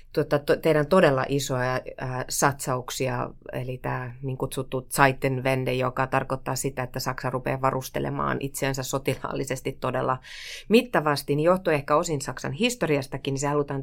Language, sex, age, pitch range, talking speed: Finnish, female, 30-49, 135-155 Hz, 125 wpm